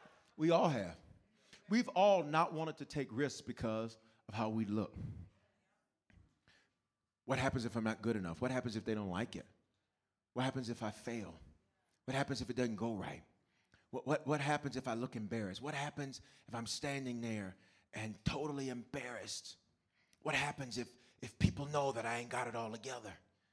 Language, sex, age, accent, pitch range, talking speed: English, male, 30-49, American, 115-185 Hz, 180 wpm